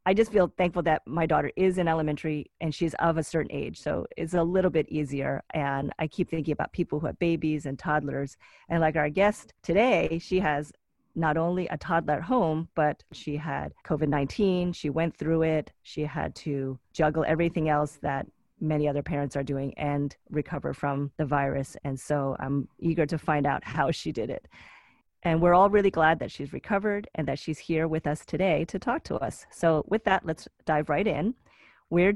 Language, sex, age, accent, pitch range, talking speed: English, female, 30-49, American, 150-180 Hz, 205 wpm